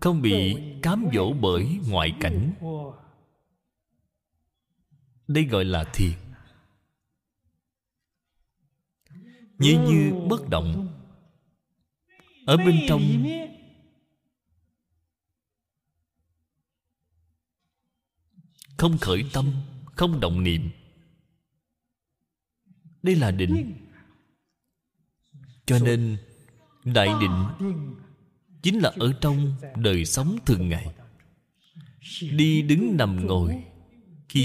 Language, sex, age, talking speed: Vietnamese, male, 30-49, 75 wpm